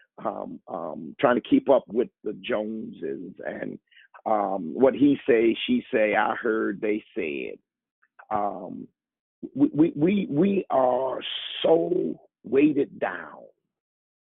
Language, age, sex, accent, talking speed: English, 50-69, male, American, 120 wpm